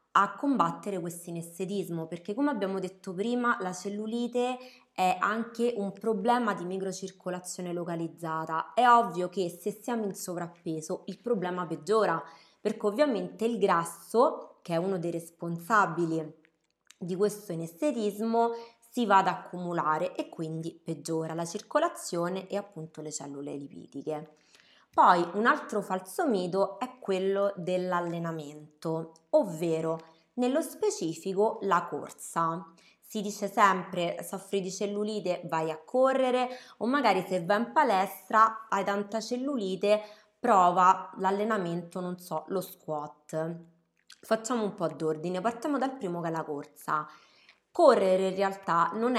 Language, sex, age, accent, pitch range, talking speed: Italian, female, 20-39, native, 165-215 Hz, 130 wpm